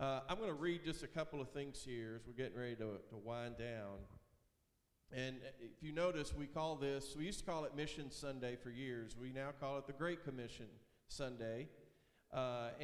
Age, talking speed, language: 50-69, 205 wpm, English